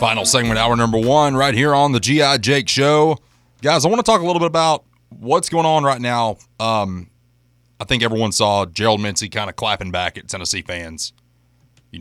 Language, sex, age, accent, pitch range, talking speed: English, male, 30-49, American, 115-145 Hz, 205 wpm